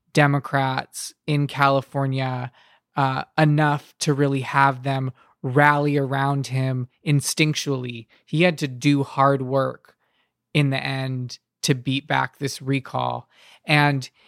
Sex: male